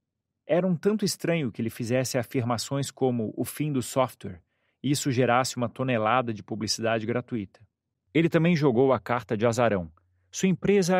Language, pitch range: Portuguese, 100-130 Hz